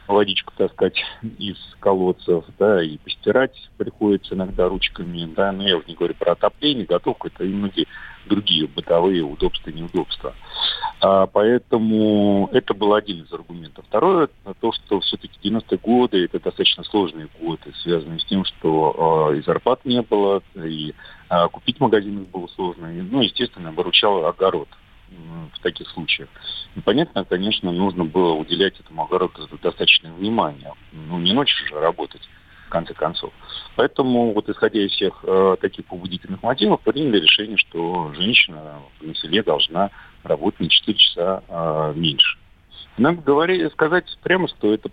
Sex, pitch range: male, 85-105 Hz